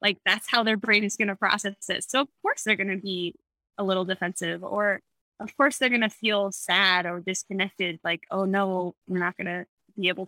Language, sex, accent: English, female, American